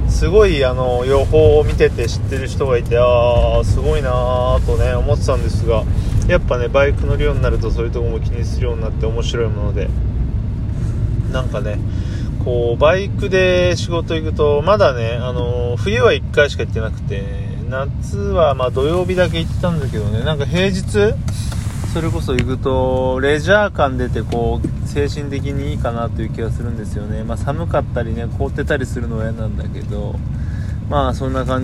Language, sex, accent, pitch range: Japanese, male, native, 105-130 Hz